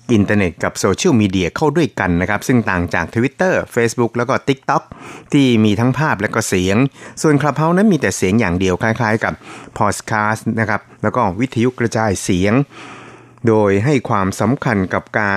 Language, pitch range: Thai, 100-125 Hz